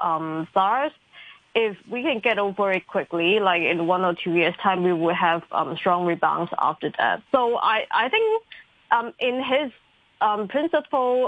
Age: 20-39